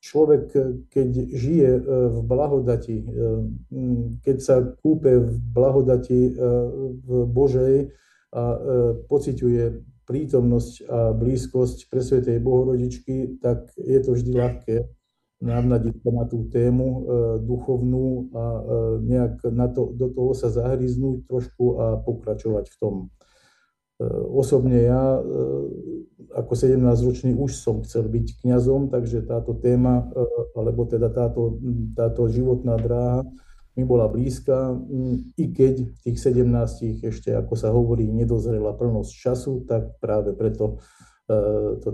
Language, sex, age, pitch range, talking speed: Slovak, male, 50-69, 115-130 Hz, 115 wpm